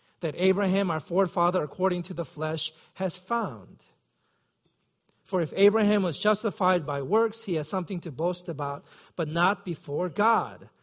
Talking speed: 150 wpm